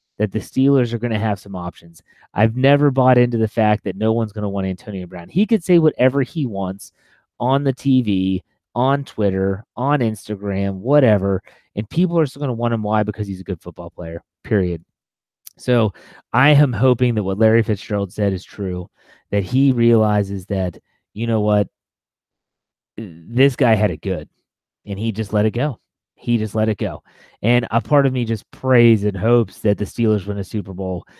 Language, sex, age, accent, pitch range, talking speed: English, male, 30-49, American, 100-120 Hz, 200 wpm